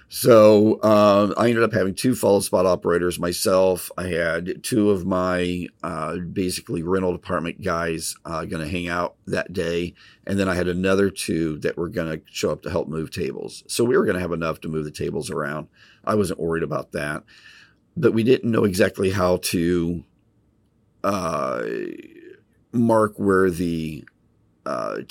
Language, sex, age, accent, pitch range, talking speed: English, male, 50-69, American, 85-100 Hz, 170 wpm